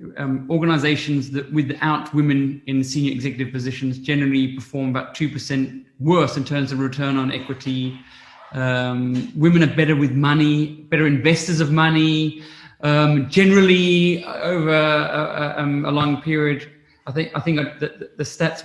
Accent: British